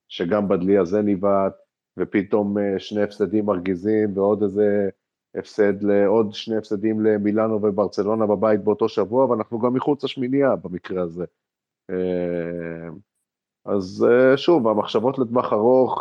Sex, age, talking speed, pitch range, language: male, 30-49, 110 wpm, 90-105 Hz, Hebrew